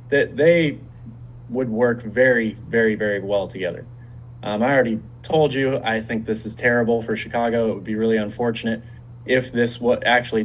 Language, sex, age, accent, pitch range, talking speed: English, male, 20-39, American, 110-125 Hz, 165 wpm